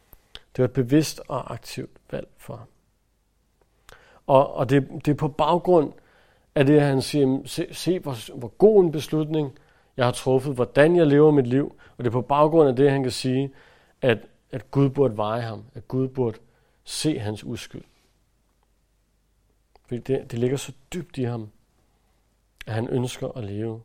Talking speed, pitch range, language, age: 180 wpm, 115-145 Hz, Danish, 50-69